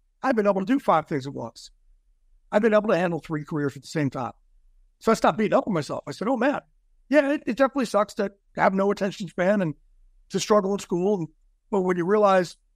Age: 60-79